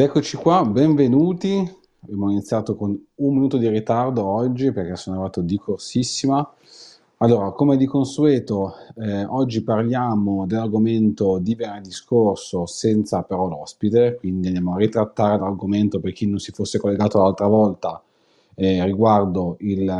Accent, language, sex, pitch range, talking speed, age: native, Italian, male, 95-115 Hz, 140 wpm, 30-49